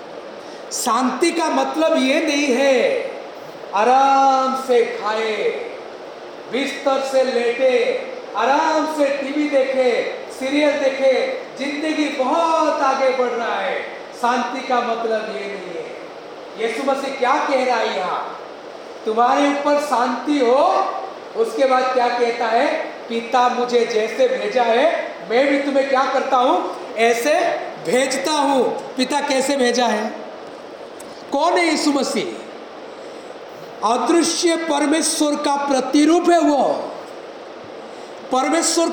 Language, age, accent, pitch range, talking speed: Hindi, 40-59, native, 255-345 Hz, 115 wpm